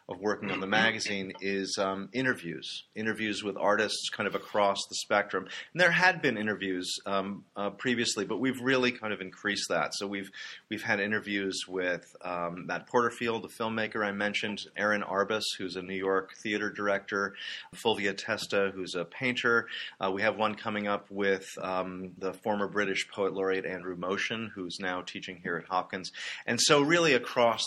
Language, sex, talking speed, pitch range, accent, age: English, male, 180 wpm, 95-110 Hz, American, 30-49